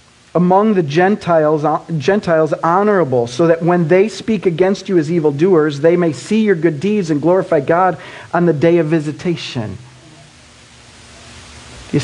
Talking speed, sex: 145 wpm, male